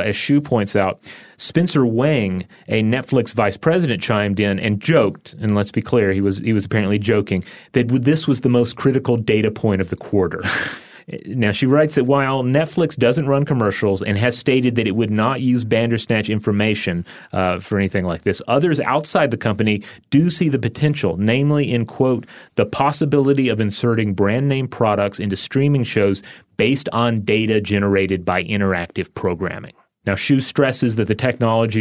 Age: 30-49